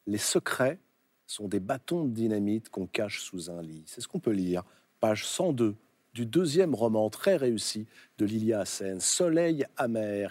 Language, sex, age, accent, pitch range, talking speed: French, male, 40-59, French, 105-140 Hz, 185 wpm